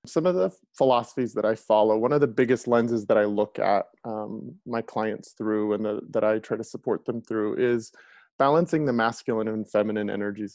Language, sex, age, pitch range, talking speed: English, male, 20-39, 110-135 Hz, 205 wpm